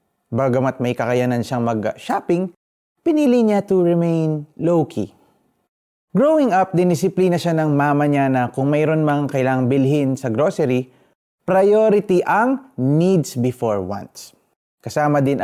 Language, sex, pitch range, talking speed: Filipino, male, 135-185 Hz, 125 wpm